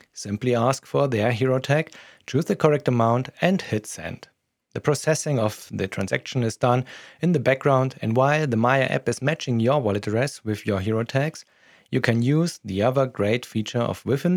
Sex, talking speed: male, 190 wpm